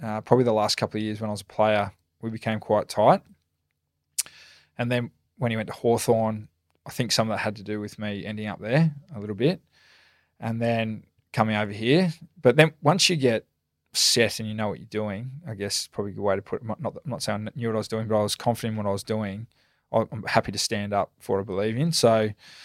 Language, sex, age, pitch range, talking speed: English, male, 20-39, 105-120 Hz, 245 wpm